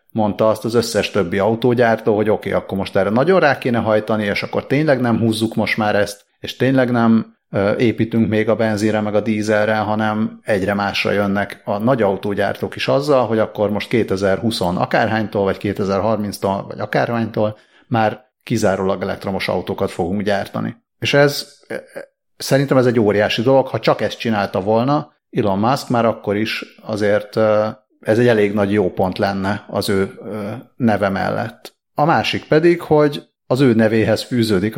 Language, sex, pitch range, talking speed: Hungarian, male, 100-120 Hz, 160 wpm